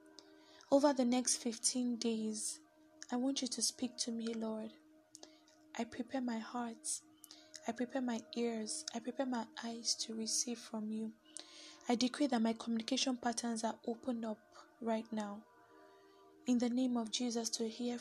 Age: 10-29